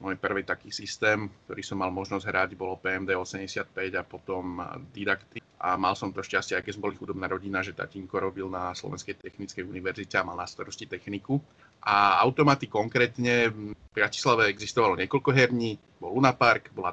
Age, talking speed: 30-49, 170 wpm